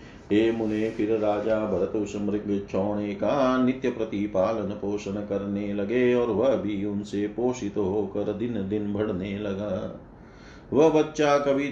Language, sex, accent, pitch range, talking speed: Hindi, male, native, 105-125 Hz, 115 wpm